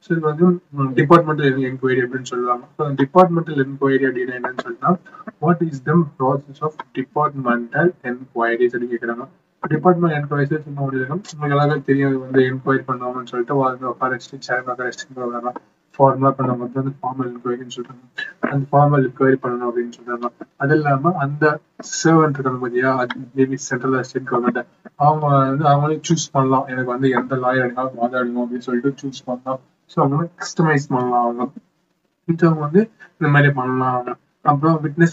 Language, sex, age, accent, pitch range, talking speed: Tamil, male, 20-39, native, 130-155 Hz, 55 wpm